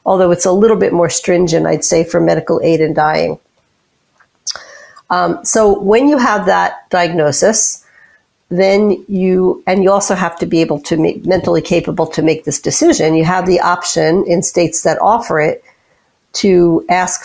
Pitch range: 165-195 Hz